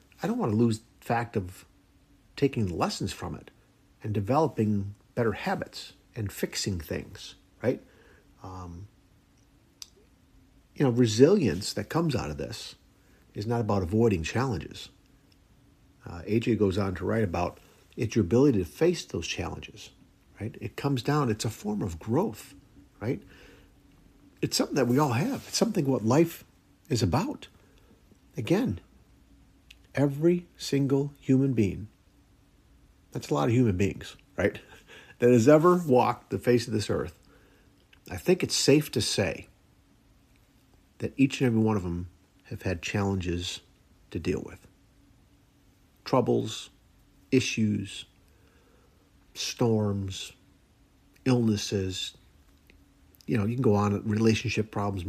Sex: male